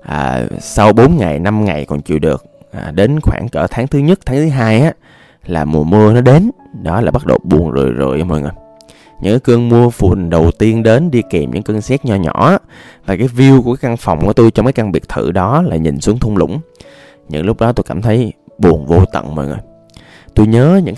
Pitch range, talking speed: 85-120 Hz, 235 wpm